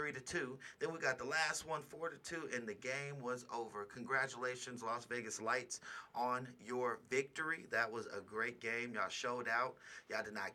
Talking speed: 200 wpm